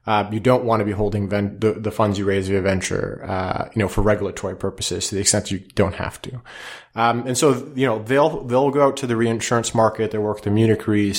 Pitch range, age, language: 105-120 Hz, 30-49, English